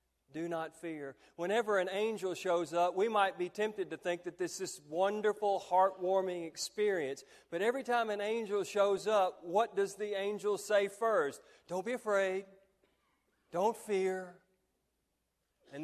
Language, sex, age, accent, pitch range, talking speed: English, male, 40-59, American, 150-190 Hz, 150 wpm